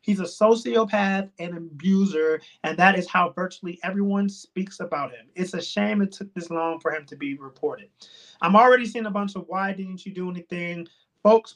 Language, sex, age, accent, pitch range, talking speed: English, male, 30-49, American, 165-200 Hz, 195 wpm